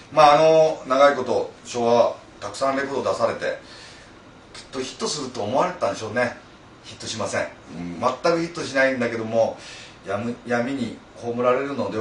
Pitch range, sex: 105-150 Hz, male